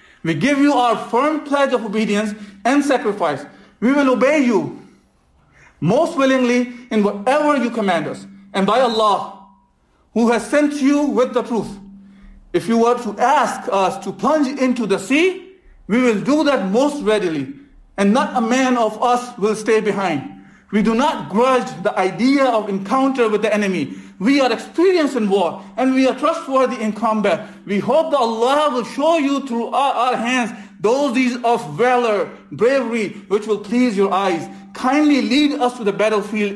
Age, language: 50-69, English